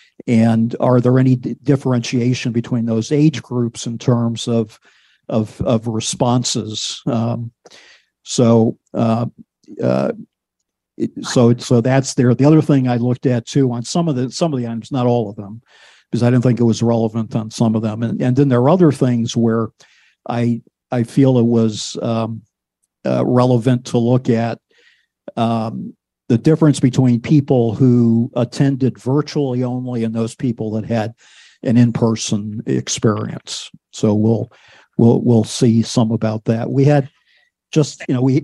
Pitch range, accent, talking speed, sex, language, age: 115-130 Hz, American, 160 wpm, male, English, 50-69